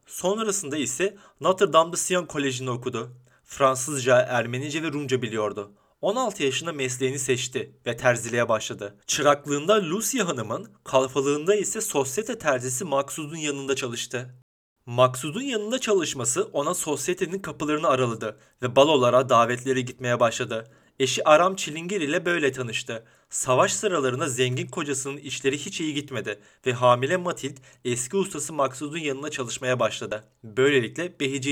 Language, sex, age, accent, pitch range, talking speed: Turkish, male, 30-49, native, 125-155 Hz, 125 wpm